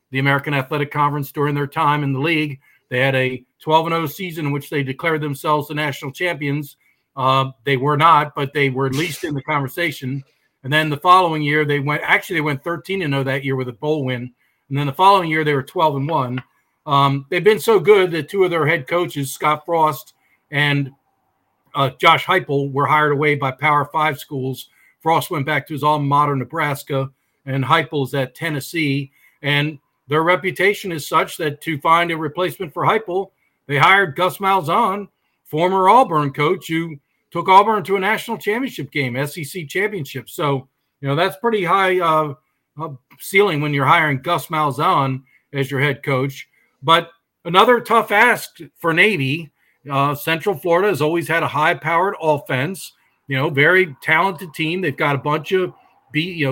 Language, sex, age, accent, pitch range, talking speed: English, male, 50-69, American, 140-170 Hz, 185 wpm